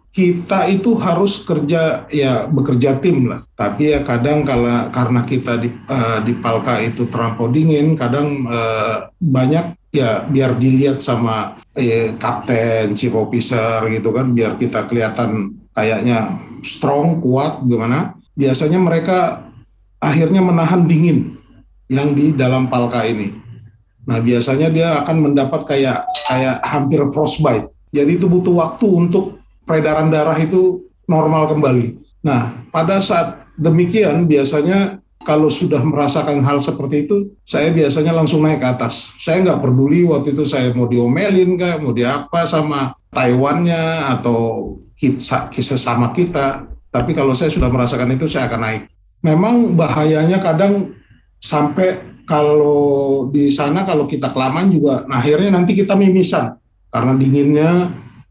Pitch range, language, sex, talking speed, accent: 120-160 Hz, Indonesian, male, 135 wpm, native